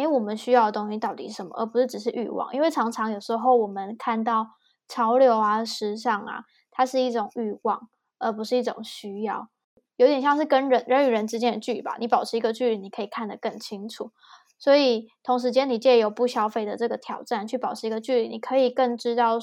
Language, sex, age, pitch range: Chinese, female, 10-29, 225-250 Hz